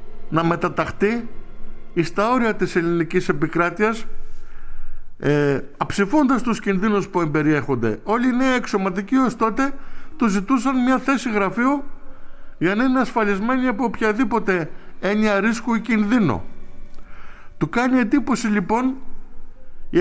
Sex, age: male, 50-69